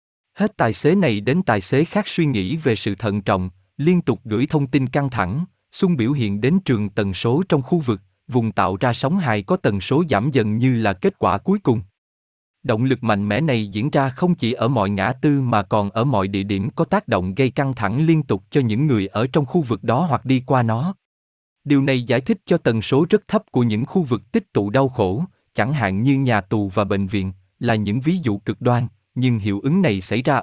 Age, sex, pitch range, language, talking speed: 20-39, male, 105-145 Hz, Vietnamese, 245 wpm